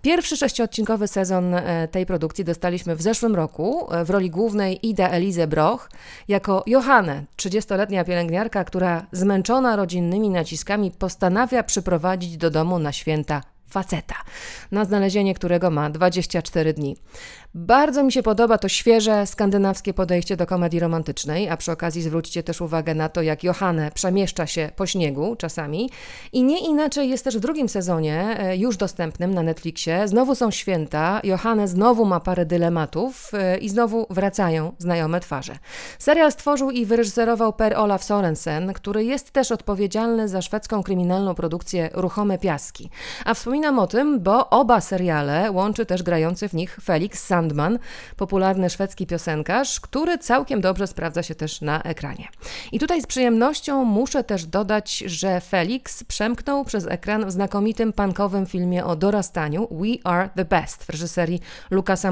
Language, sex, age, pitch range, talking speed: Polish, female, 30-49, 170-225 Hz, 150 wpm